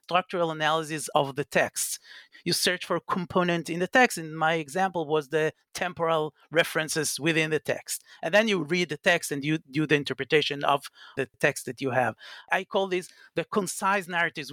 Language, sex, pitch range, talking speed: English, male, 155-195 Hz, 190 wpm